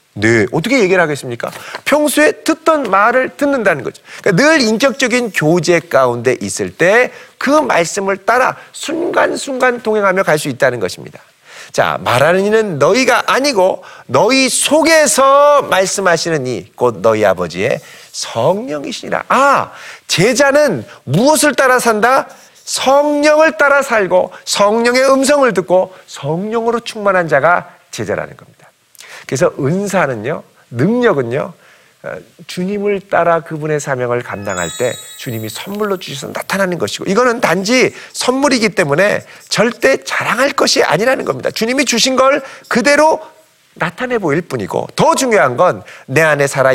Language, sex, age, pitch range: Korean, male, 40-59, 170-265 Hz